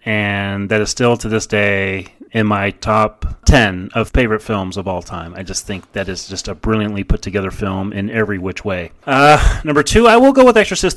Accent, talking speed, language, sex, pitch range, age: American, 220 wpm, English, male, 100-135 Hz, 30-49